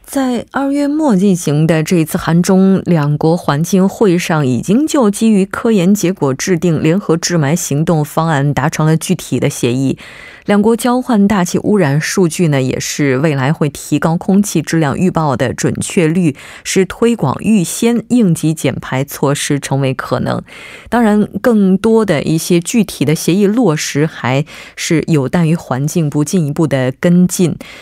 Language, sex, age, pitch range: Korean, female, 20-39, 150-200 Hz